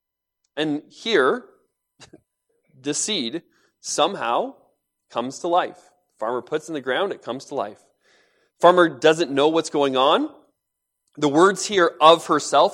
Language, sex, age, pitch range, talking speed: English, male, 30-49, 130-170 Hz, 130 wpm